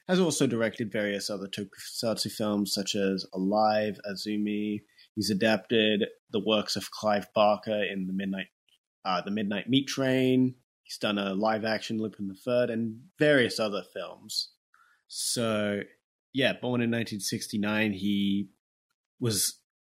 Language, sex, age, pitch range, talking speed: English, male, 30-49, 100-120 Hz, 135 wpm